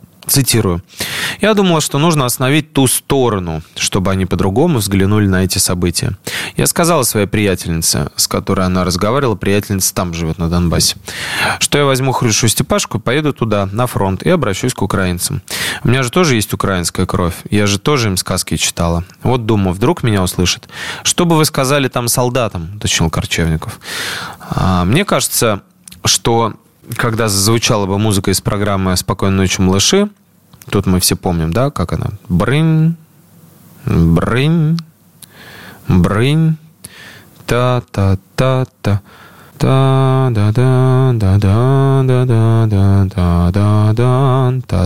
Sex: male